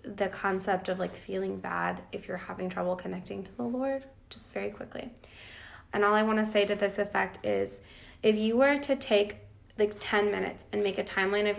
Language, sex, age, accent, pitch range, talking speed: English, female, 20-39, American, 195-240 Hz, 205 wpm